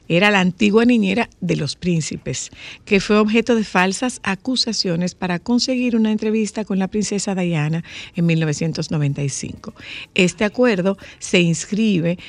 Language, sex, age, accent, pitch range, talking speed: Spanish, female, 50-69, American, 170-220 Hz, 130 wpm